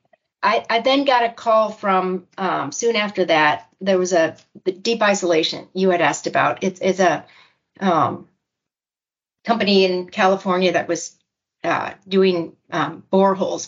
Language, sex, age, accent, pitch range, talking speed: English, female, 40-59, American, 170-195 Hz, 150 wpm